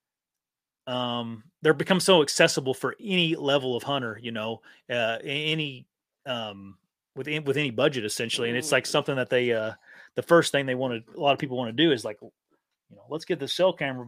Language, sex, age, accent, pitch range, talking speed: English, male, 30-49, American, 115-140 Hz, 210 wpm